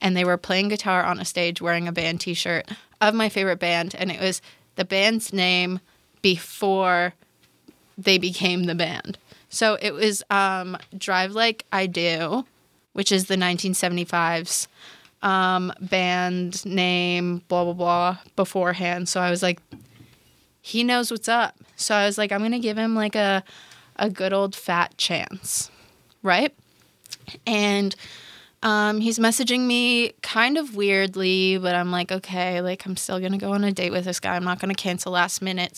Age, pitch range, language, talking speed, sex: 20-39, 180-205 Hz, English, 170 wpm, female